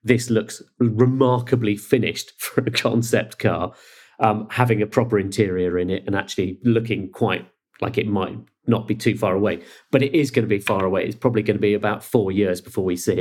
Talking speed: 210 wpm